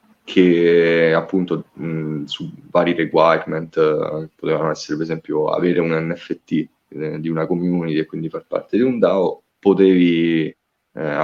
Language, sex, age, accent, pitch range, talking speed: Italian, male, 20-39, native, 80-90 Hz, 145 wpm